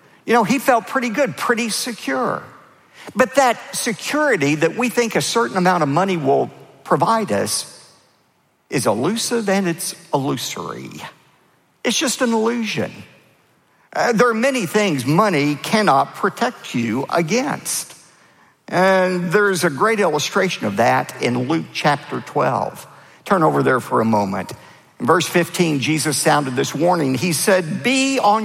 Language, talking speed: English, 145 wpm